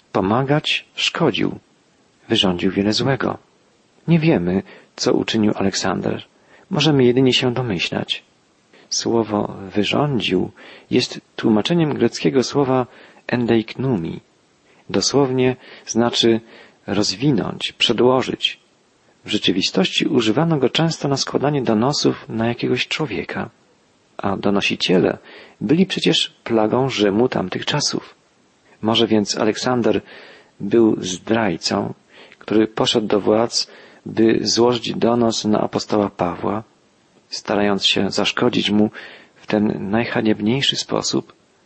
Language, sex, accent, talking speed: Polish, male, native, 95 wpm